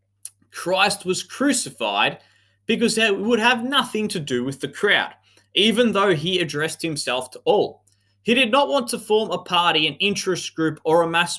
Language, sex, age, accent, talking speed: English, male, 20-39, Australian, 180 wpm